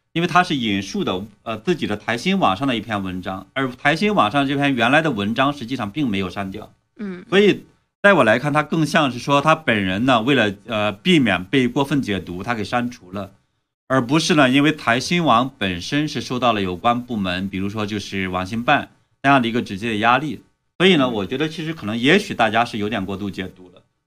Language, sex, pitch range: Chinese, male, 100-140 Hz